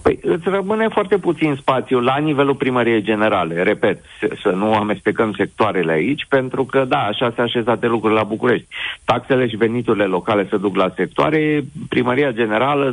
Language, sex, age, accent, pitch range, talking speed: Romanian, male, 50-69, native, 105-135 Hz, 160 wpm